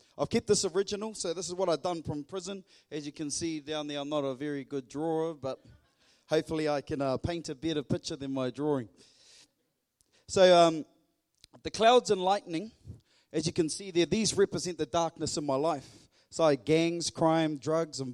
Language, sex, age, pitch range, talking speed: English, male, 30-49, 145-185 Hz, 195 wpm